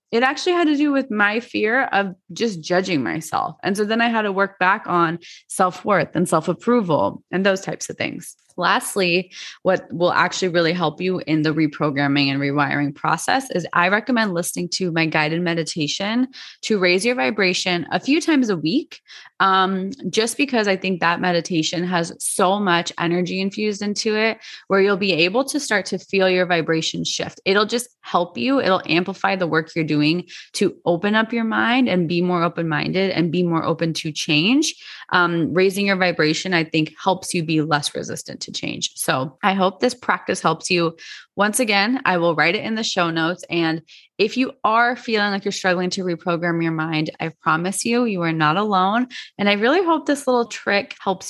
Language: English